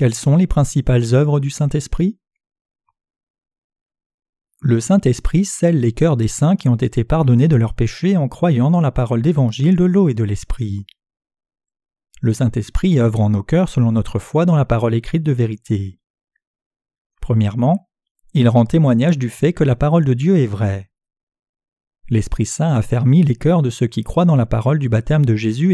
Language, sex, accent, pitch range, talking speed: French, male, French, 115-165 Hz, 175 wpm